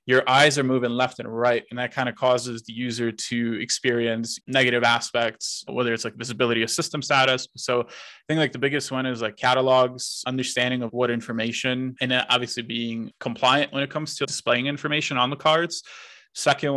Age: 20-39